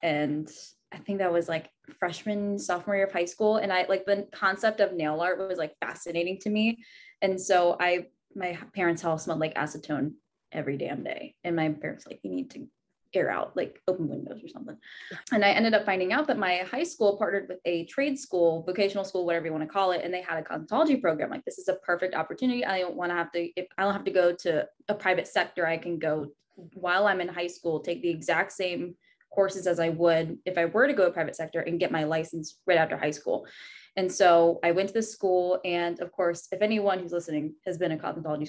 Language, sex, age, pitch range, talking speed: English, female, 10-29, 170-200 Hz, 235 wpm